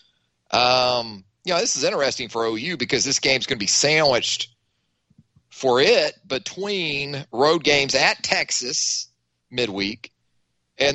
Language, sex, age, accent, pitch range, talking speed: English, male, 40-59, American, 115-155 Hz, 130 wpm